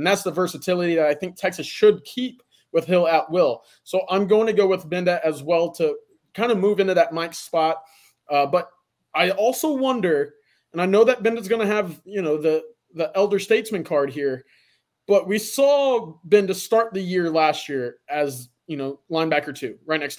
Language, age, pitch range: English, 20-39, 160-210 Hz